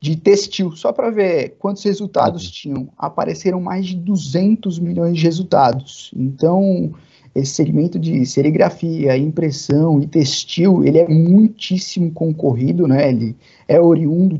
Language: Portuguese